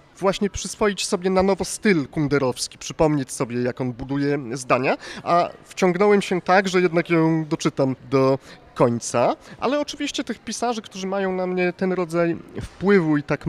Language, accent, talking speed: Polish, native, 160 wpm